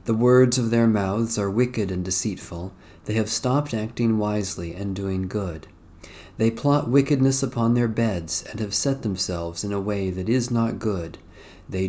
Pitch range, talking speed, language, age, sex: 95-125 Hz, 175 wpm, English, 40-59, male